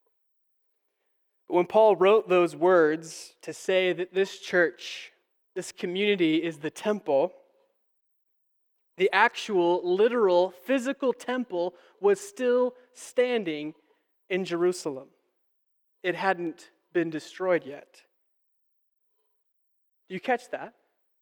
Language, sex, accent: English, male, American